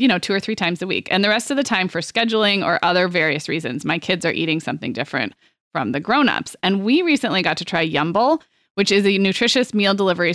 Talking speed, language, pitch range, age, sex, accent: 245 wpm, English, 175-235 Hz, 20-39, female, American